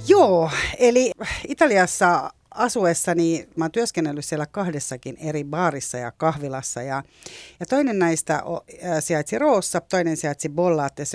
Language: Finnish